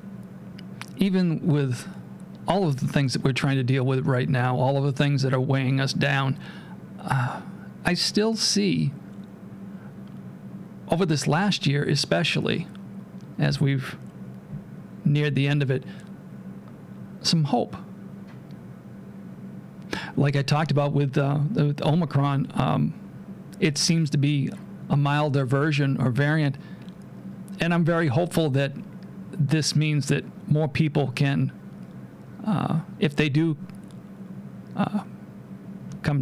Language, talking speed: English, 125 wpm